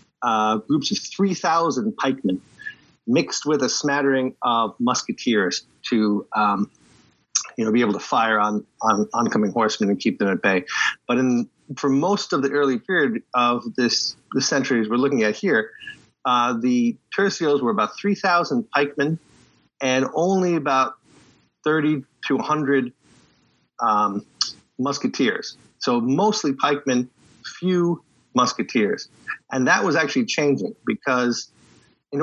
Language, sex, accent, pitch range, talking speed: English, male, American, 120-165 Hz, 135 wpm